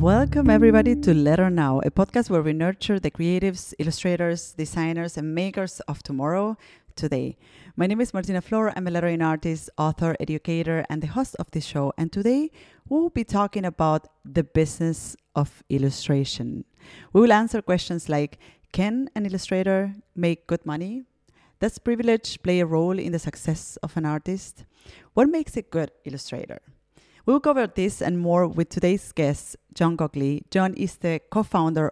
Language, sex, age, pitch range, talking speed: English, female, 30-49, 155-195 Hz, 160 wpm